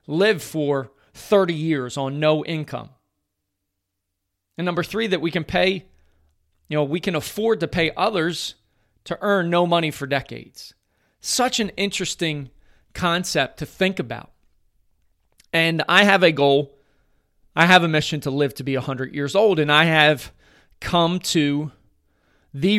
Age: 40-59